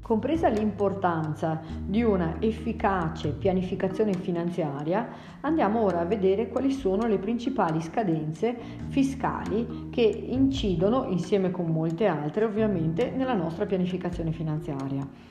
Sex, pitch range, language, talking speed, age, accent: female, 175-220 Hz, Italian, 110 wpm, 40-59, native